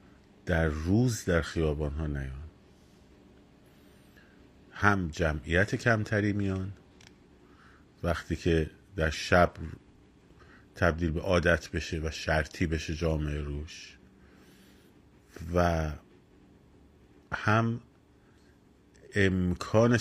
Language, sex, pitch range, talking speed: Persian, male, 75-100 Hz, 80 wpm